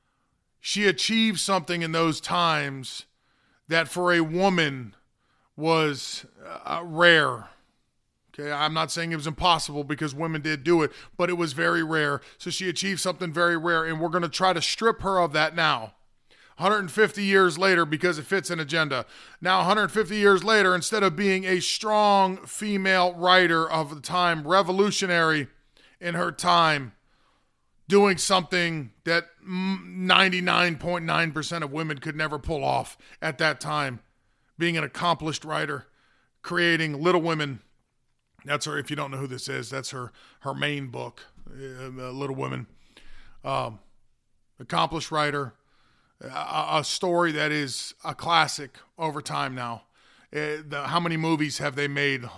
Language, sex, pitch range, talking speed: English, male, 145-180 Hz, 150 wpm